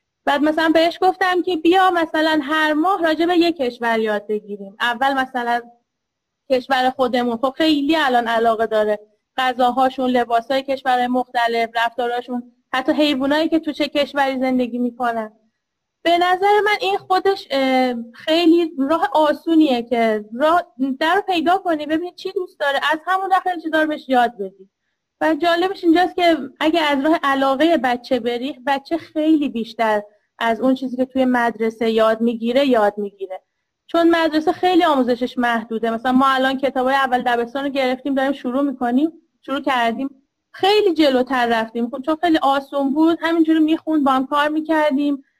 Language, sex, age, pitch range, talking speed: Persian, female, 30-49, 240-310 Hz, 155 wpm